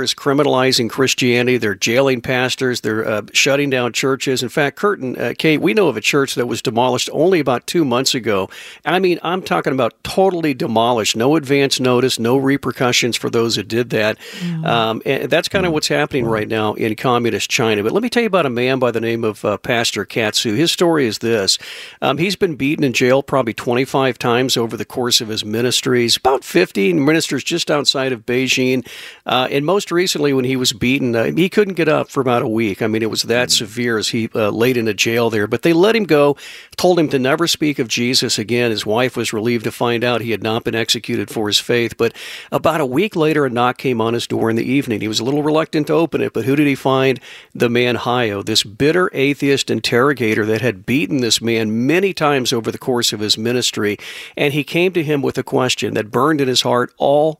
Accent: American